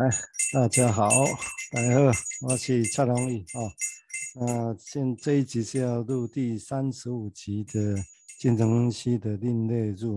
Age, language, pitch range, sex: 50-69, Chinese, 105-130 Hz, male